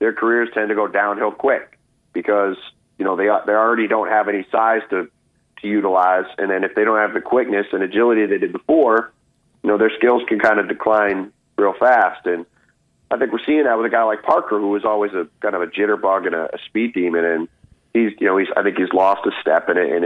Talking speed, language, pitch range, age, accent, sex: 240 wpm, English, 95-115 Hz, 30-49, American, male